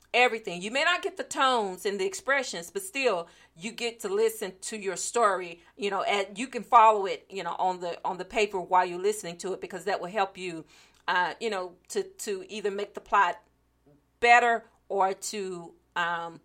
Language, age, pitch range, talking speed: English, 40-59, 180-225 Hz, 205 wpm